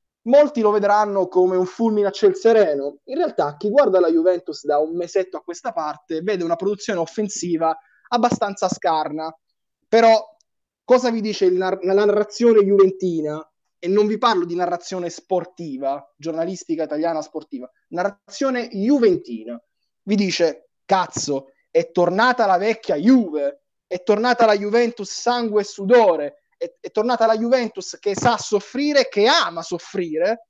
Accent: native